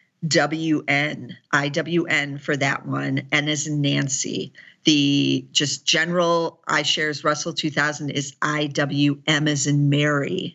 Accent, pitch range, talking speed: American, 150-180 Hz, 120 wpm